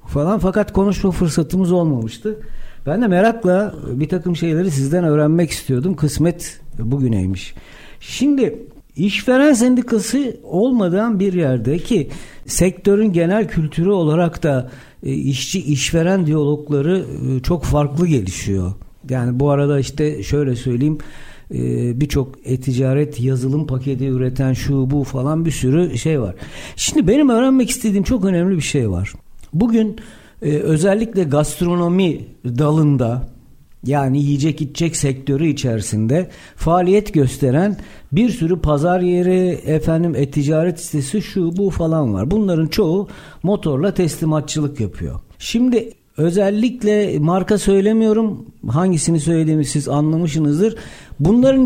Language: Turkish